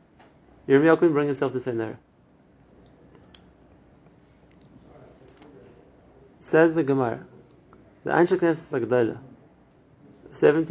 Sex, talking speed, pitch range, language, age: male, 90 wpm, 125-155 Hz, English, 30-49